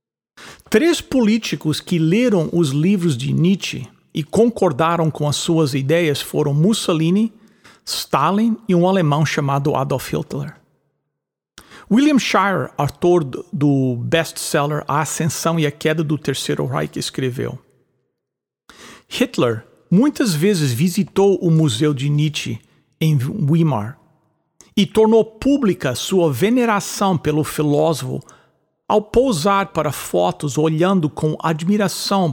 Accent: Brazilian